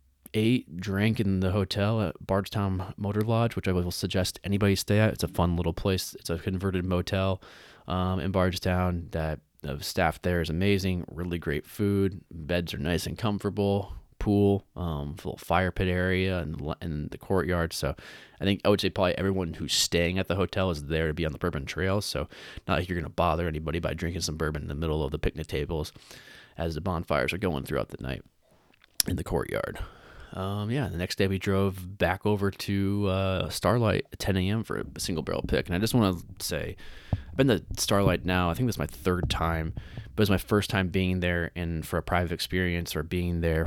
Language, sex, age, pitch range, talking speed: English, male, 20-39, 85-95 Hz, 215 wpm